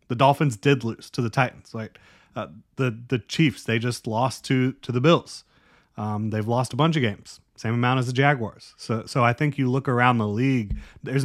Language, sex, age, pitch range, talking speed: English, male, 30-49, 110-135 Hz, 220 wpm